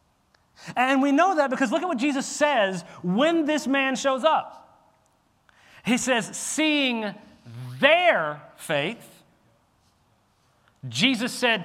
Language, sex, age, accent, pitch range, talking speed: English, male, 40-59, American, 160-245 Hz, 115 wpm